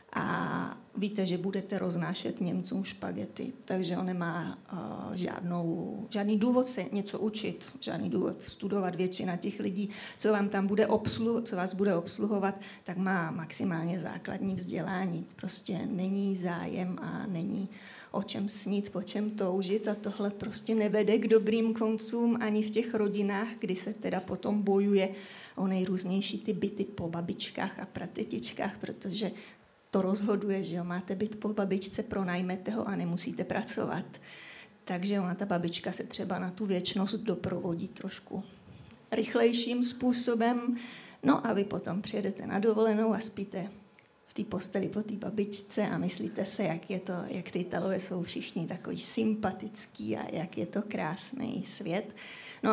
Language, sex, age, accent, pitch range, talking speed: Czech, female, 30-49, native, 190-220 Hz, 150 wpm